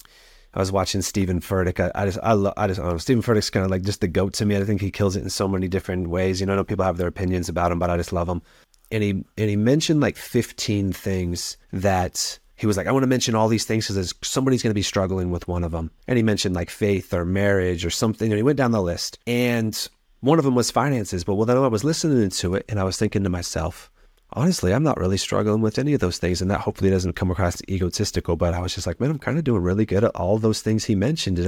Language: English